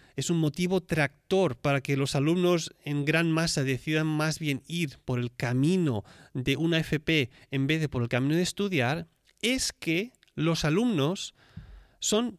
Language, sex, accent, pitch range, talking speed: Spanish, male, Spanish, 125-165 Hz, 165 wpm